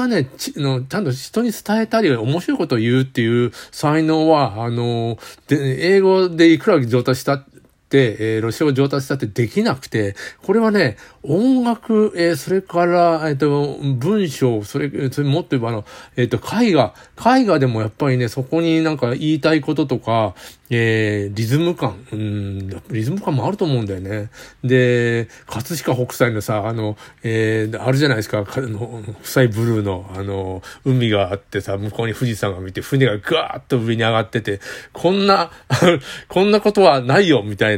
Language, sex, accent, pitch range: Japanese, male, native, 110-155 Hz